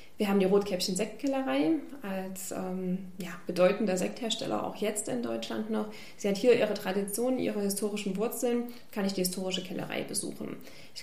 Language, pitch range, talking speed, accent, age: German, 195-245 Hz, 150 wpm, German, 30-49